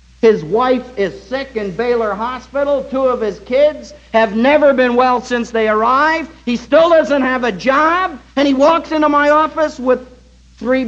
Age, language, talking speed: 60-79, English, 175 wpm